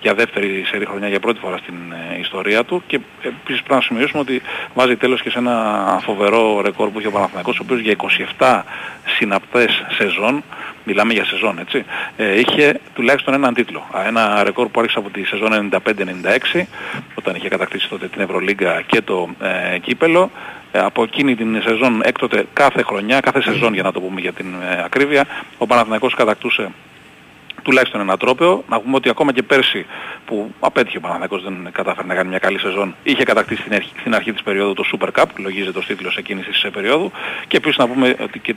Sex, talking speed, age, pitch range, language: male, 190 wpm, 40-59, 95-120 Hz, Greek